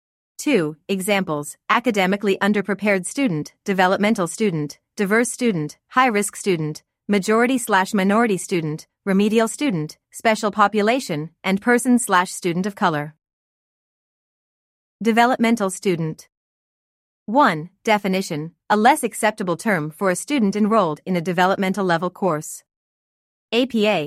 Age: 30-49